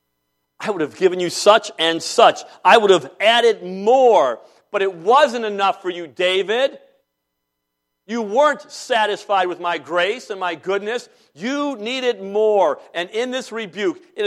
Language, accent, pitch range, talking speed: English, American, 140-230 Hz, 155 wpm